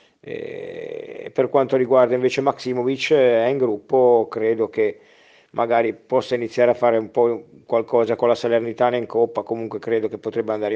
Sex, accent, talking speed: male, native, 160 wpm